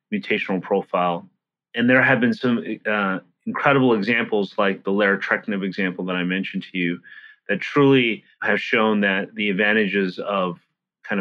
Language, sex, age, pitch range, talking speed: English, male, 30-49, 95-125 Hz, 150 wpm